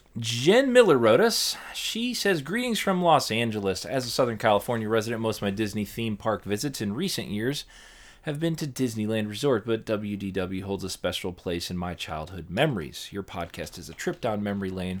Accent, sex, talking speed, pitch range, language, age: American, male, 190 wpm, 90-110 Hz, English, 20-39